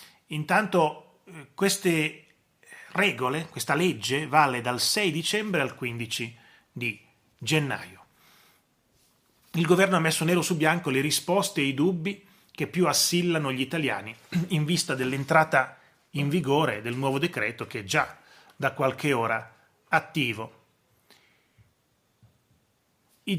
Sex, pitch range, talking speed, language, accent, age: male, 130-180 Hz, 120 wpm, Italian, native, 30-49